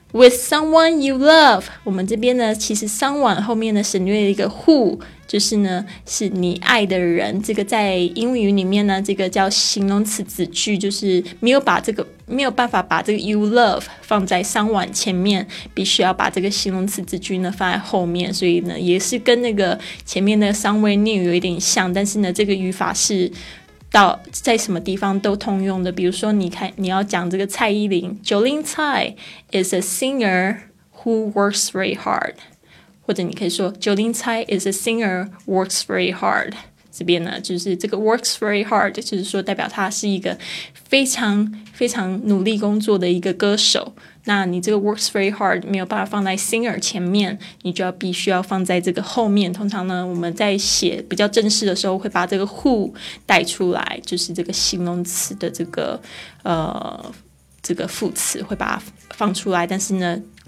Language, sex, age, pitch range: Chinese, female, 20-39, 185-215 Hz